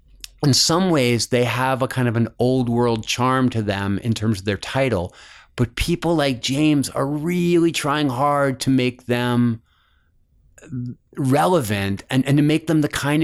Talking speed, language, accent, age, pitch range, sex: 170 wpm, English, American, 30-49, 110-135 Hz, male